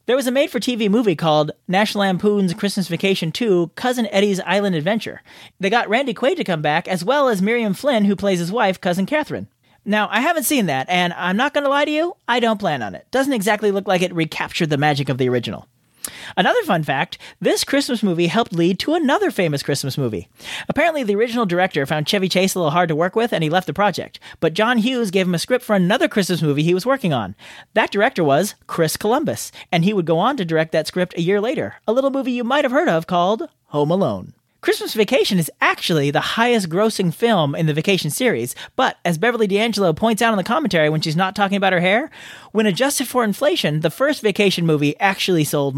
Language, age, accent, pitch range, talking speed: English, 40-59, American, 165-230 Hz, 230 wpm